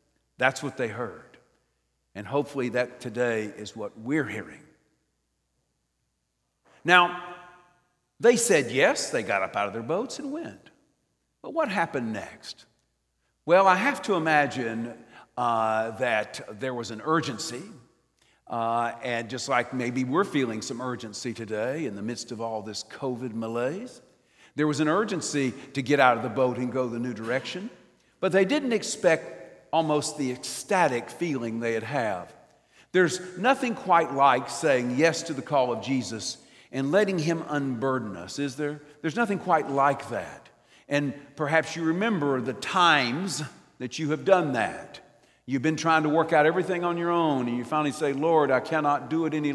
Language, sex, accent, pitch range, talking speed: English, male, American, 120-165 Hz, 165 wpm